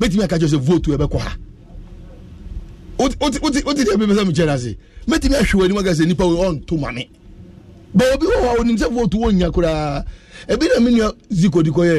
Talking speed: 50 wpm